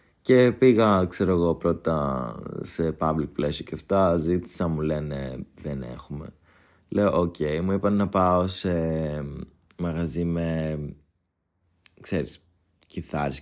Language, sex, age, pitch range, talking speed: Greek, male, 20-39, 80-95 Hz, 120 wpm